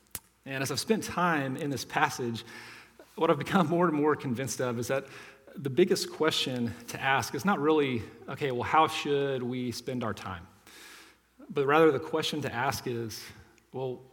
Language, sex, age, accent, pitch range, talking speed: English, male, 40-59, American, 115-150 Hz, 180 wpm